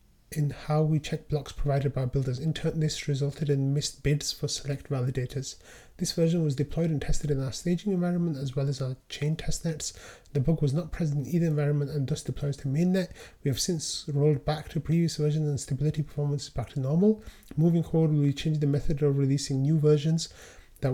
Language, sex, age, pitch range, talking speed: English, male, 30-49, 140-155 Hz, 215 wpm